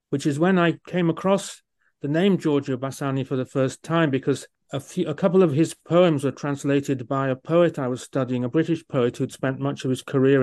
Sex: male